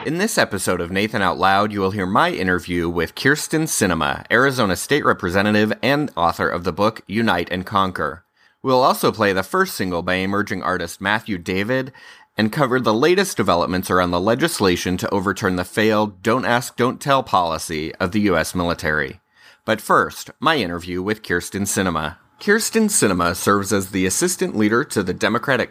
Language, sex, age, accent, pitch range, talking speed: English, male, 30-49, American, 95-145 Hz, 175 wpm